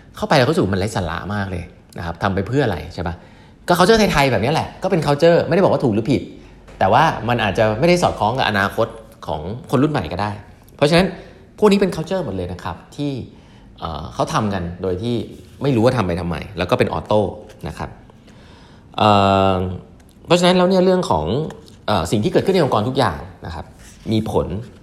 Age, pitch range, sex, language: 20-39, 95-135 Hz, male, English